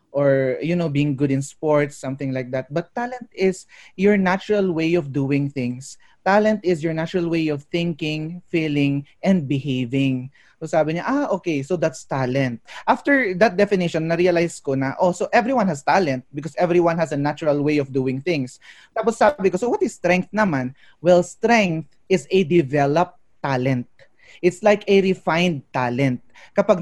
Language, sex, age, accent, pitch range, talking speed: English, male, 20-39, Filipino, 145-195 Hz, 170 wpm